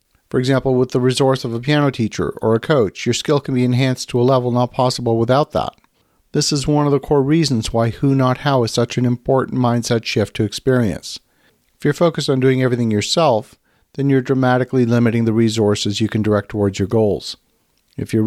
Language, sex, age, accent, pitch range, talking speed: English, male, 50-69, American, 115-140 Hz, 210 wpm